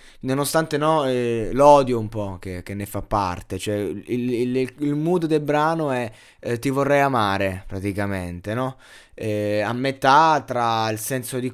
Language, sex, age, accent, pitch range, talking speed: Italian, male, 20-39, native, 115-155 Hz, 165 wpm